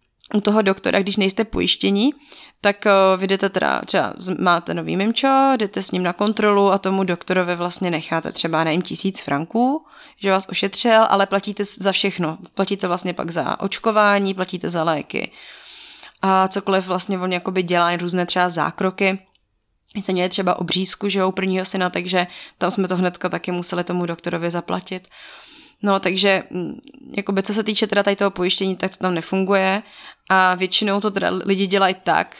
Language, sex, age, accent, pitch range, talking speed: Czech, female, 20-39, native, 180-200 Hz, 170 wpm